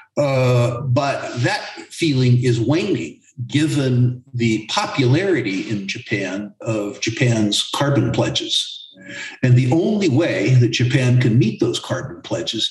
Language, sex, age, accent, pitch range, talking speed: English, male, 50-69, American, 115-140 Hz, 125 wpm